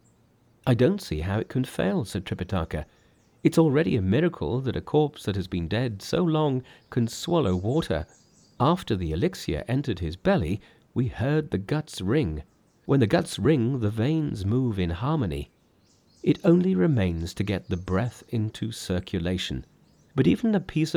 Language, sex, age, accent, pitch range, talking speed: English, male, 40-59, British, 95-145 Hz, 165 wpm